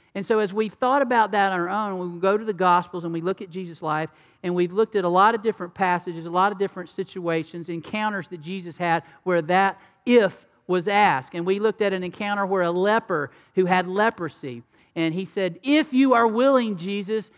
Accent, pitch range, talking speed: American, 175-205 Hz, 220 wpm